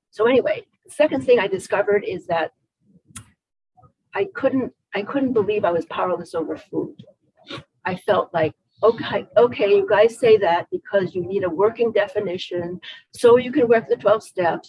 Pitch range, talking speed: 175-245 Hz, 170 wpm